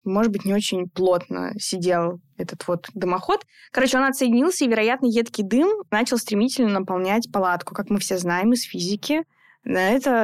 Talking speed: 165 wpm